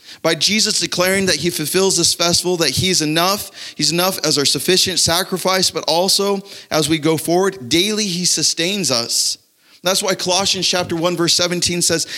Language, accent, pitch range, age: English, American, 125-175 Hz, 30-49